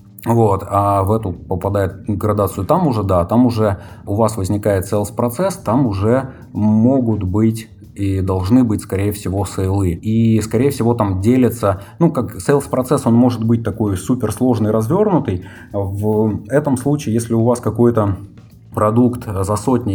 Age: 30-49